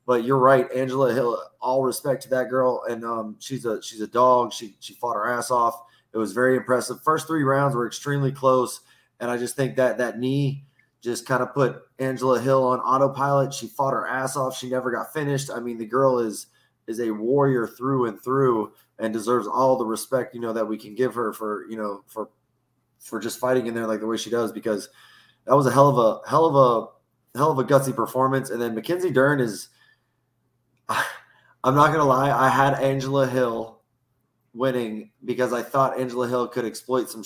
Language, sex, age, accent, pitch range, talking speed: English, male, 20-39, American, 115-135 Hz, 210 wpm